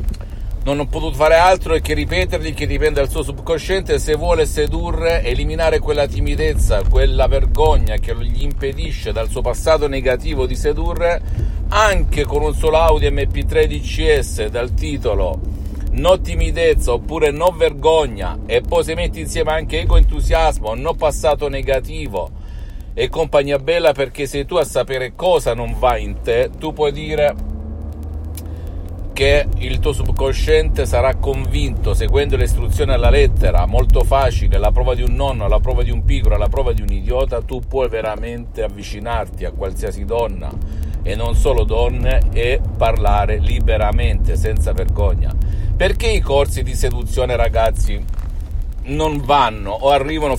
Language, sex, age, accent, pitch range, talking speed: Italian, male, 50-69, native, 85-140 Hz, 150 wpm